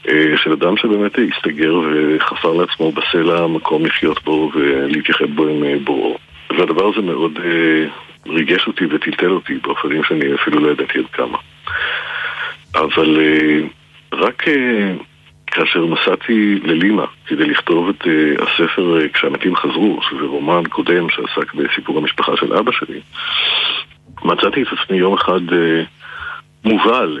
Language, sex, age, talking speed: Hebrew, male, 50-69, 120 wpm